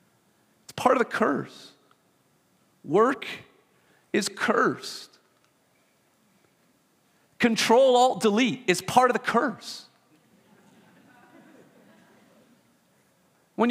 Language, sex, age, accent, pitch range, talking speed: English, male, 40-59, American, 210-295 Hz, 70 wpm